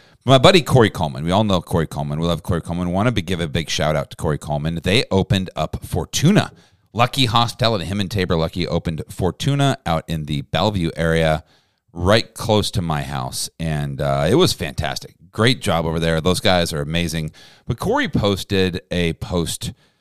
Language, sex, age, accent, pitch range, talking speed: English, male, 40-59, American, 85-115 Hz, 190 wpm